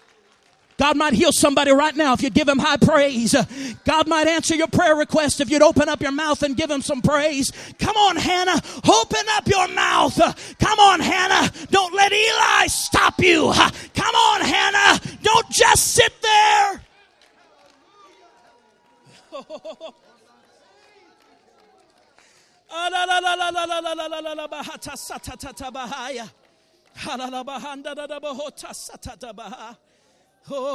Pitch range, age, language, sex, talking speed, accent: 270-360 Hz, 40-59, English, male, 100 wpm, American